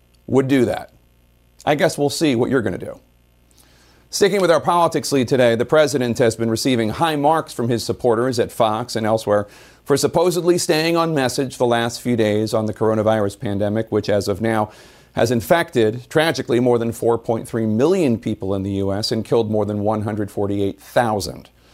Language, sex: English, male